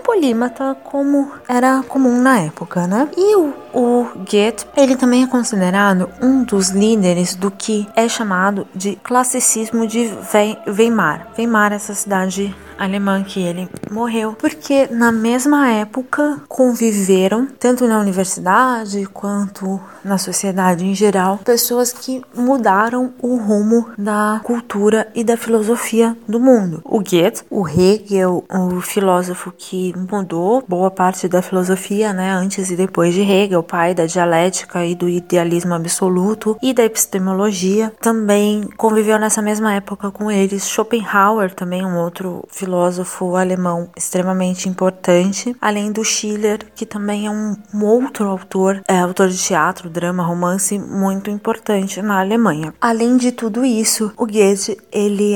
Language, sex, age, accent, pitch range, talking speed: Portuguese, female, 20-39, Brazilian, 190-235 Hz, 140 wpm